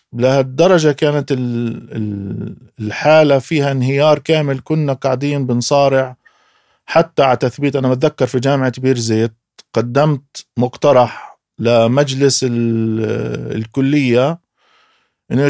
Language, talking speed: Arabic, 90 wpm